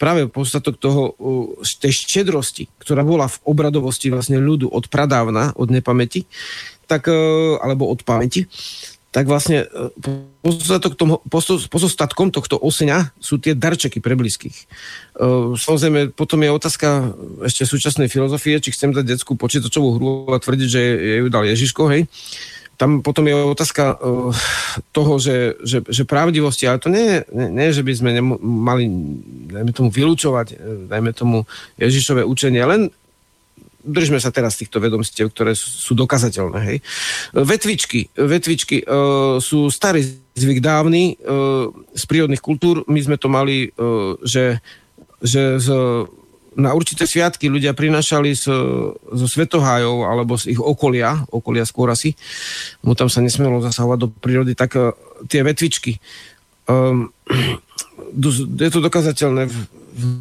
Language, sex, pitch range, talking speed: Slovak, male, 120-150 Hz, 135 wpm